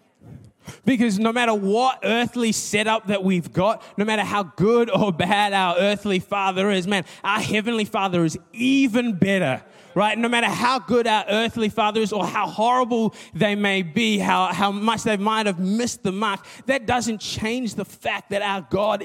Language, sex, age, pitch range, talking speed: English, male, 20-39, 170-220 Hz, 185 wpm